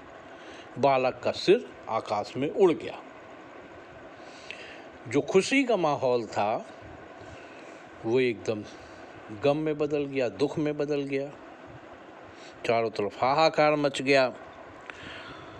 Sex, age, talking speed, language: male, 60-79, 105 wpm, Hindi